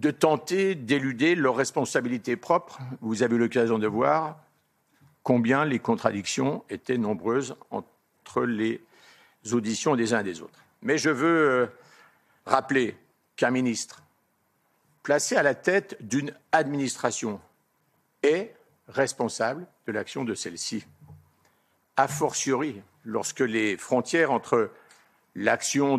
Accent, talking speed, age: French, 115 wpm, 50-69